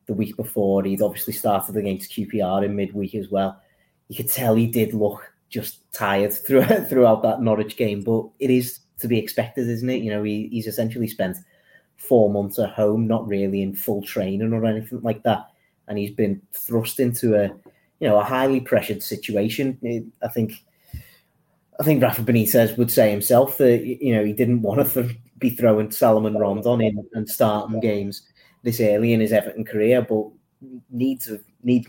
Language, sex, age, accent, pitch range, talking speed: English, male, 30-49, British, 105-120 Hz, 180 wpm